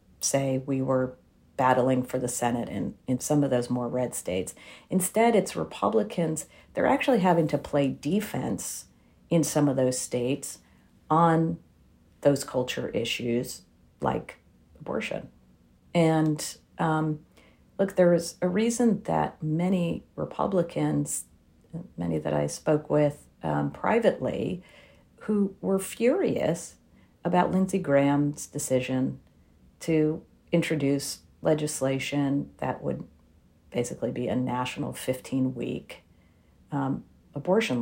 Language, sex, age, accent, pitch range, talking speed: English, female, 50-69, American, 125-160 Hz, 110 wpm